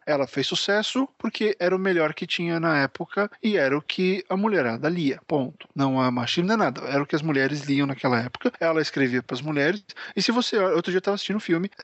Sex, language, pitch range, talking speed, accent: male, Portuguese, 135-195 Hz, 240 wpm, Brazilian